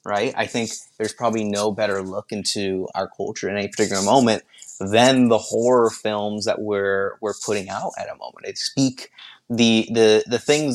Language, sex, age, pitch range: English, male, 20-39, 100-115 Hz